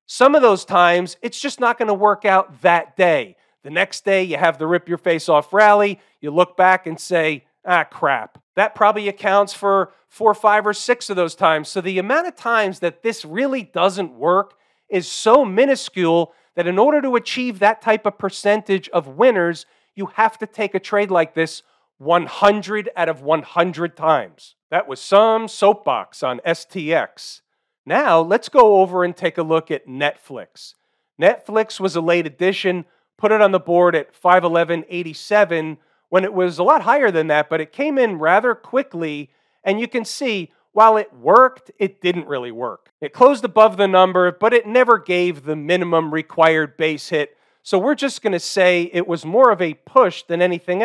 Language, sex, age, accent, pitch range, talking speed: English, male, 40-59, American, 170-215 Hz, 185 wpm